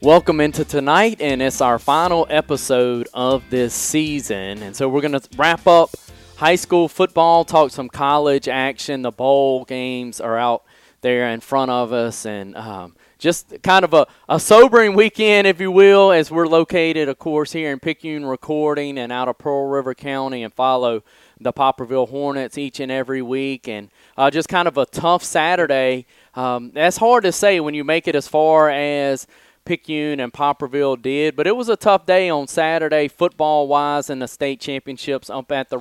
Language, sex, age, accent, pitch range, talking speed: English, male, 20-39, American, 130-160 Hz, 190 wpm